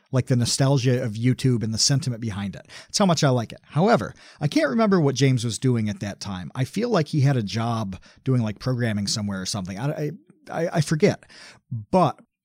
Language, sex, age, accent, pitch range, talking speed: English, male, 40-59, American, 120-150 Hz, 215 wpm